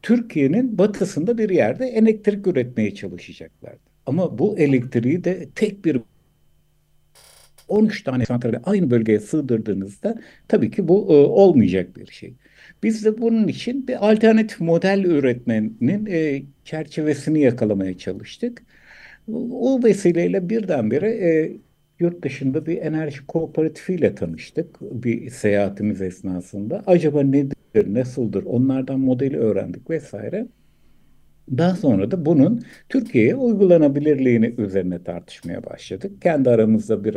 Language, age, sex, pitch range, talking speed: Turkish, 60-79, male, 120-185 Hz, 115 wpm